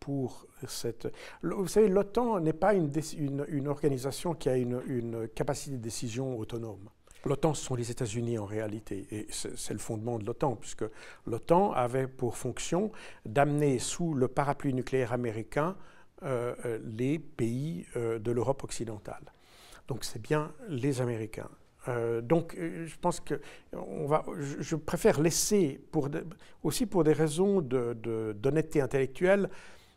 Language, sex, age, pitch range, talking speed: French, male, 60-79, 120-160 Hz, 160 wpm